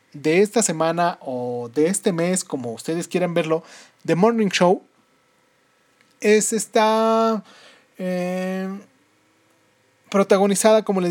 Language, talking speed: Spanish, 110 wpm